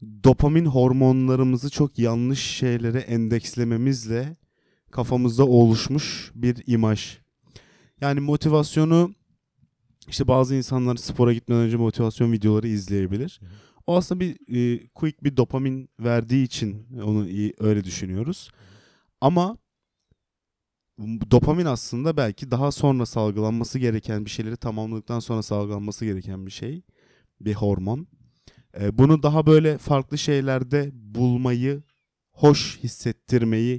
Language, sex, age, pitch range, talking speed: Turkish, male, 30-49, 110-135 Hz, 105 wpm